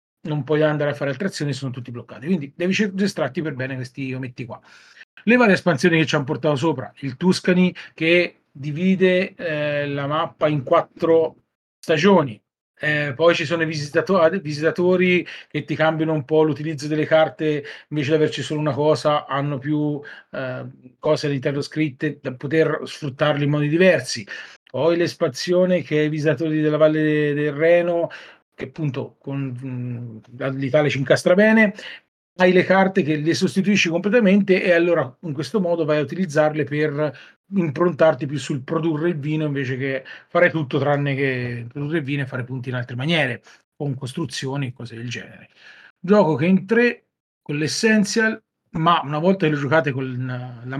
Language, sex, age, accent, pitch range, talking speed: Italian, male, 40-59, native, 140-170 Hz, 170 wpm